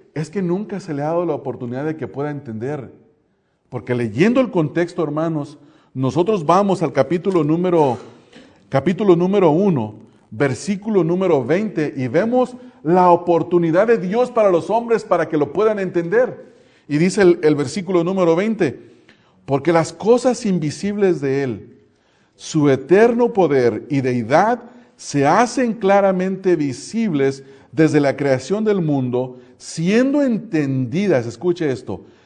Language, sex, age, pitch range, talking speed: English, male, 40-59, 140-200 Hz, 140 wpm